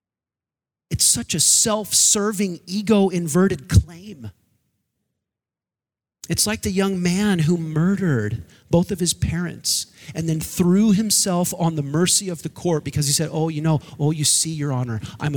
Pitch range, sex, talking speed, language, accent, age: 140-205 Hz, male, 150 wpm, English, American, 40-59